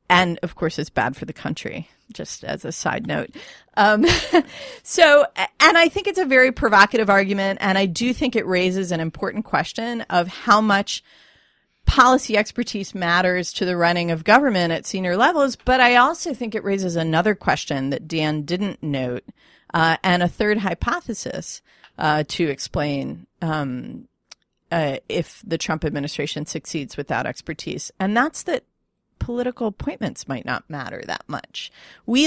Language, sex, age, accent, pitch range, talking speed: English, female, 40-59, American, 165-225 Hz, 160 wpm